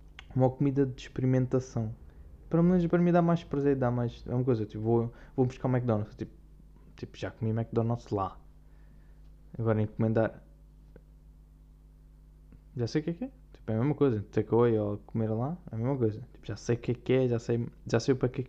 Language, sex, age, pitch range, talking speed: Portuguese, male, 10-29, 110-130 Hz, 210 wpm